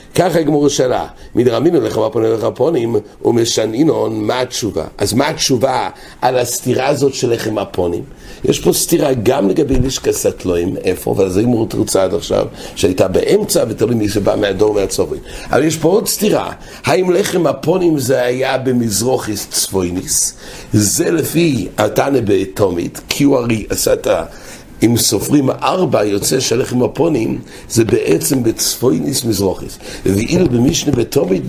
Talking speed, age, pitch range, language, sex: 130 wpm, 60-79, 105-145 Hz, English, male